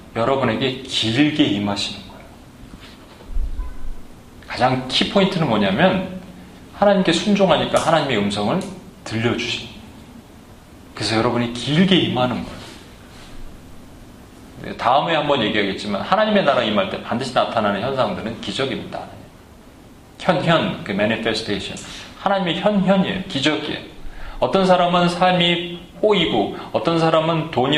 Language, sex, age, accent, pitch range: Korean, male, 30-49, native, 115-185 Hz